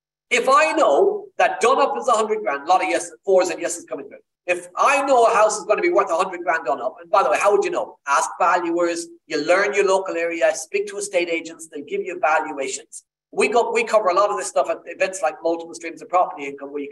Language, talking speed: English, 260 wpm